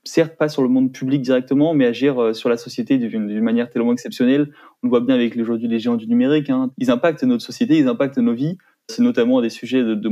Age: 20-39